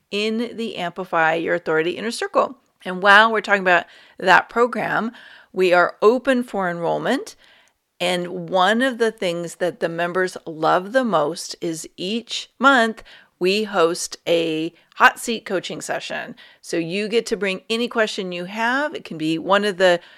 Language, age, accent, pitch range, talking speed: English, 40-59, American, 175-230 Hz, 165 wpm